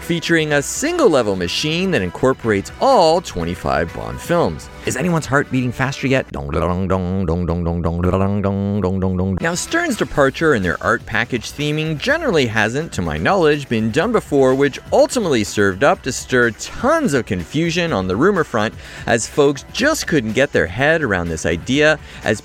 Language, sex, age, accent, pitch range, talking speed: English, male, 30-49, American, 100-170 Hz, 150 wpm